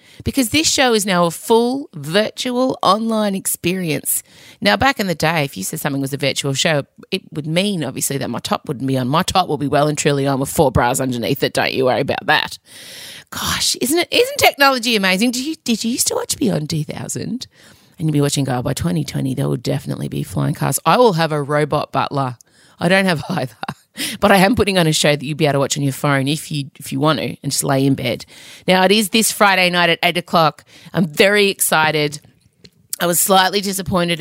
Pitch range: 150-205 Hz